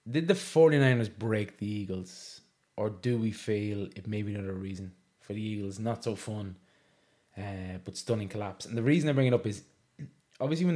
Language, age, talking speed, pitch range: English, 20-39, 195 wpm, 100-115 Hz